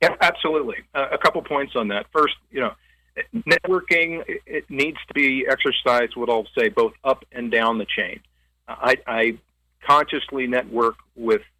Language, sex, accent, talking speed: English, male, American, 170 wpm